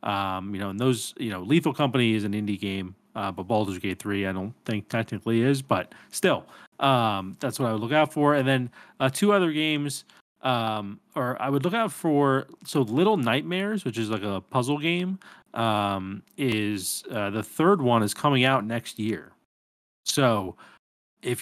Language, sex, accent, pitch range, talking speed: English, male, American, 105-145 Hz, 190 wpm